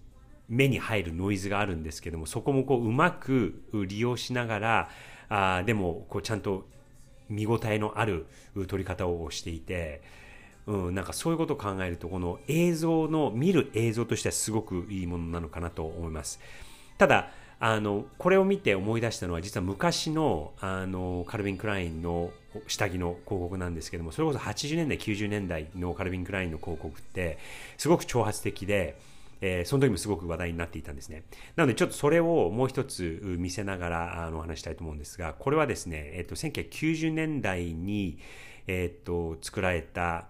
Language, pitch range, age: Japanese, 85-120 Hz, 40-59